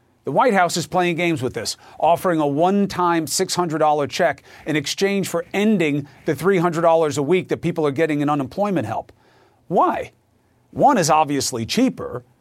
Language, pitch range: English, 140-180 Hz